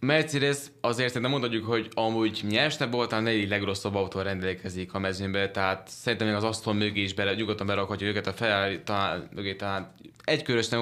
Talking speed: 165 wpm